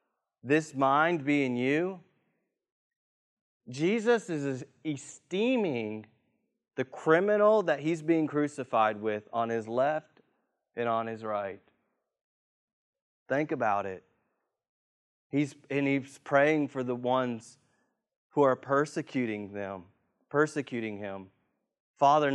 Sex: male